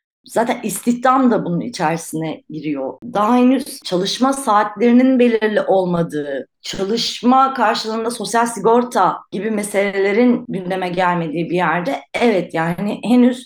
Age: 30-49